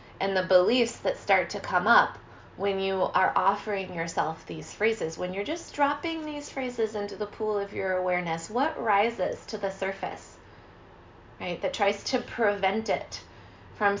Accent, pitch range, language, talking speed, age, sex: American, 170-210 Hz, English, 165 wpm, 20-39, female